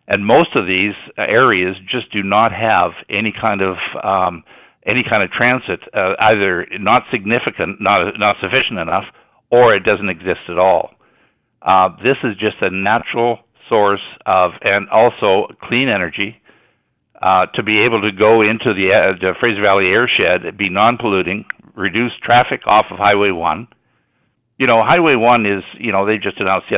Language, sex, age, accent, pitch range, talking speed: English, male, 60-79, American, 100-115 Hz, 170 wpm